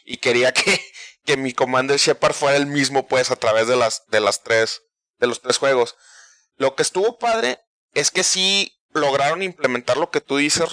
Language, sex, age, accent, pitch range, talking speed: Spanish, male, 30-49, Mexican, 125-180 Hz, 205 wpm